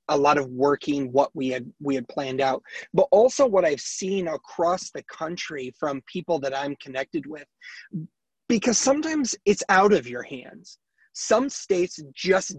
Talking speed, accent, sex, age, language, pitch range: 165 wpm, American, male, 30-49, English, 135-175 Hz